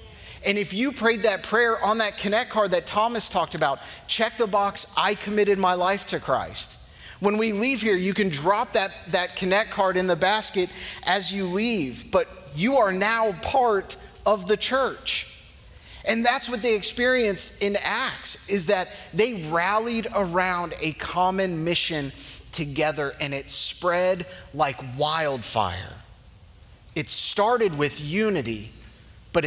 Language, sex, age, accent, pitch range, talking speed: English, male, 30-49, American, 150-215 Hz, 150 wpm